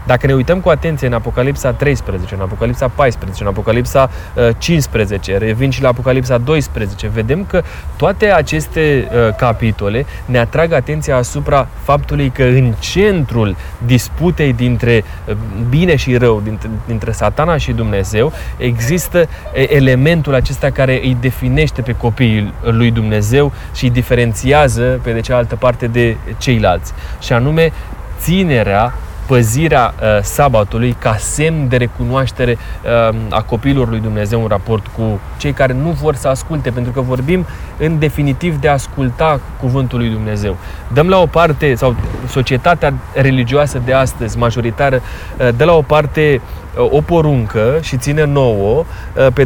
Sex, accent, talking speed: male, native, 135 wpm